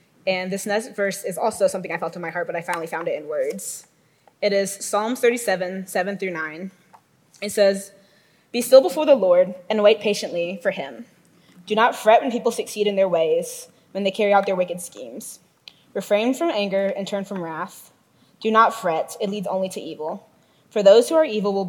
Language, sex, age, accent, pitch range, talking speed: English, female, 20-39, American, 180-210 Hz, 205 wpm